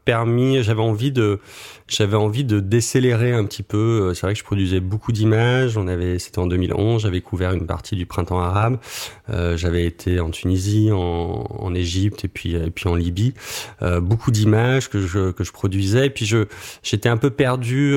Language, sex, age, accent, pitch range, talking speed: French, male, 30-49, French, 90-110 Hz, 195 wpm